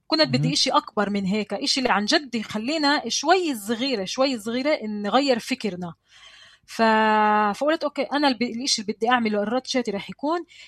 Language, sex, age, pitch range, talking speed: Arabic, female, 20-39, 205-265 Hz, 165 wpm